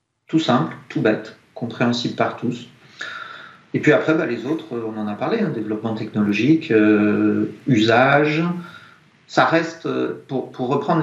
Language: French